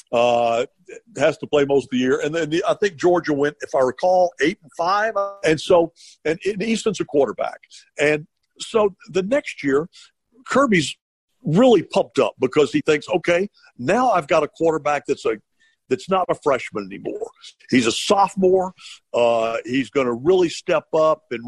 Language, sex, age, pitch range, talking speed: English, male, 60-79, 130-185 Hz, 180 wpm